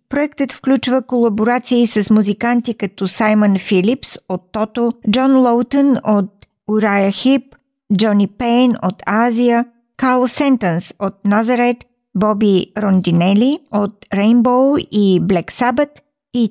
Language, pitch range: Bulgarian, 205-245 Hz